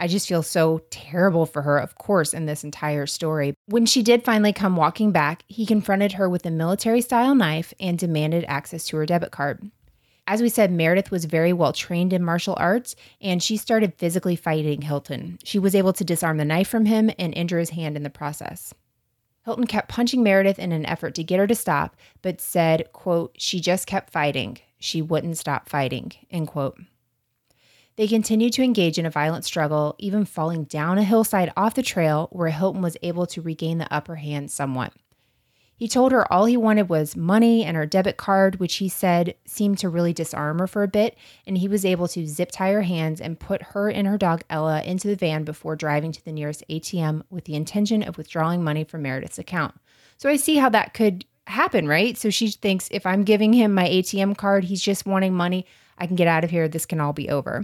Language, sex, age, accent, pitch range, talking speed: English, female, 20-39, American, 155-200 Hz, 215 wpm